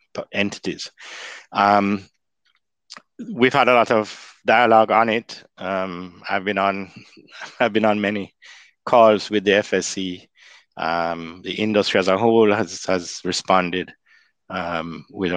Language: English